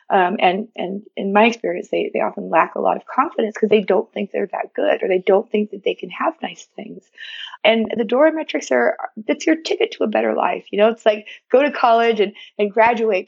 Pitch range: 215-295 Hz